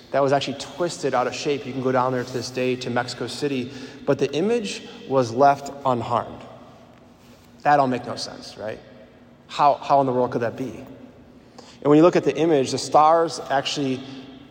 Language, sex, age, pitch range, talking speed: English, male, 20-39, 125-140 Hz, 200 wpm